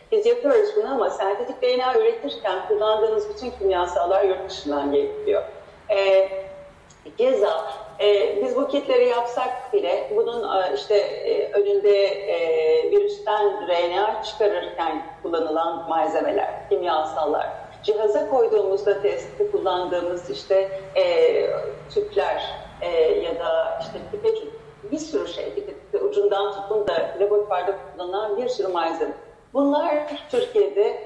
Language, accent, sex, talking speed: Turkish, native, female, 115 wpm